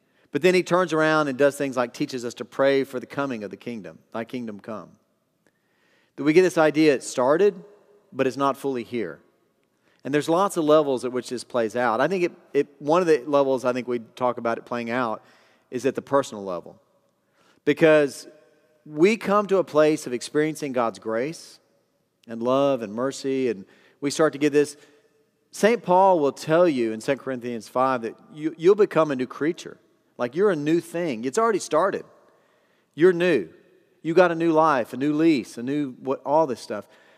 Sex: male